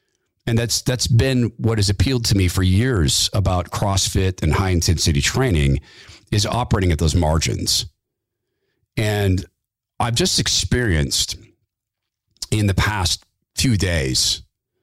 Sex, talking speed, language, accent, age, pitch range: male, 120 wpm, English, American, 50-69, 95-120 Hz